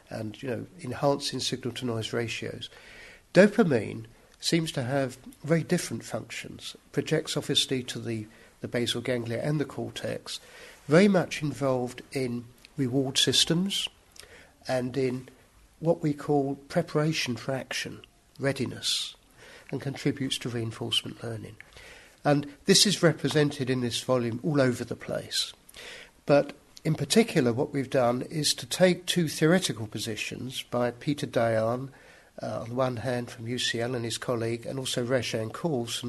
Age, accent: 50-69, British